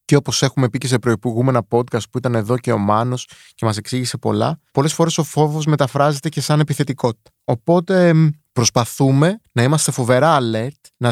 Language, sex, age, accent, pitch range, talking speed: Greek, male, 30-49, native, 110-150 Hz, 180 wpm